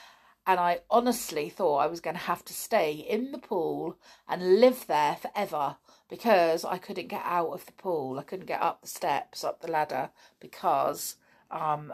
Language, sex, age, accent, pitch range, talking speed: English, female, 50-69, British, 170-250 Hz, 185 wpm